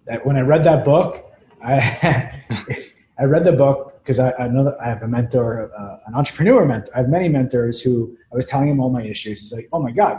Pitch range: 120-155 Hz